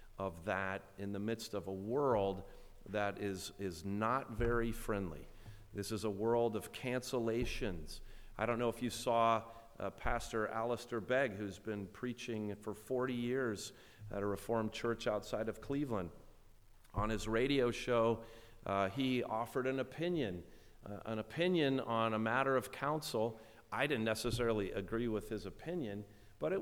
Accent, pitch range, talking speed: American, 105-130 Hz, 155 wpm